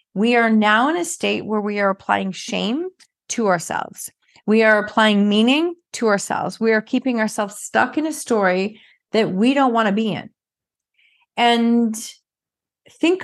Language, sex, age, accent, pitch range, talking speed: English, female, 30-49, American, 200-255 Hz, 165 wpm